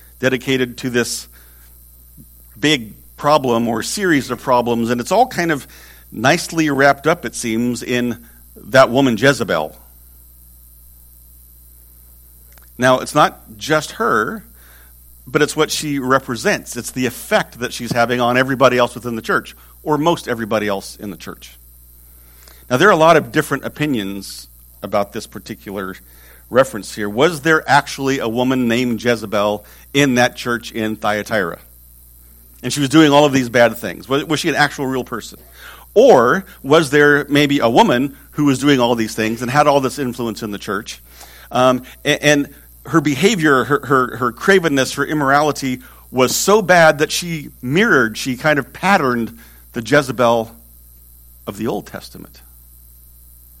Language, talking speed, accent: English, 155 wpm, American